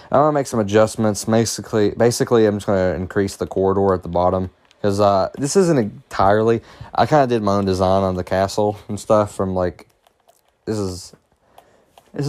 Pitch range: 95-110 Hz